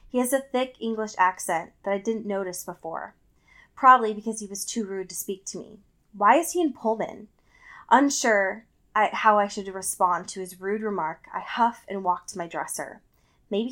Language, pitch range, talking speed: English, 185-225 Hz, 190 wpm